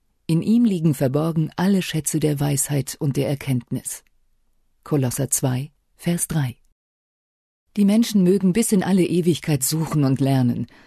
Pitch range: 135-180 Hz